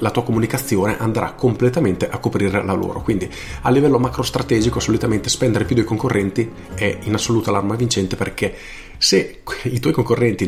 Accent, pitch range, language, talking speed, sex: native, 100-125 Hz, Italian, 165 wpm, male